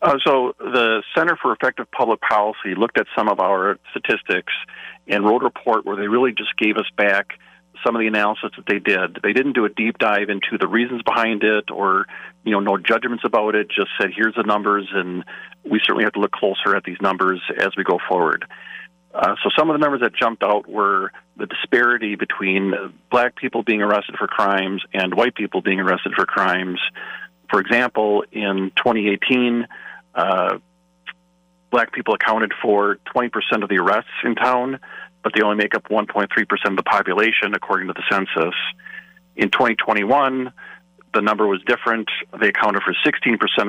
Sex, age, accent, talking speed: male, 40-59, American, 185 wpm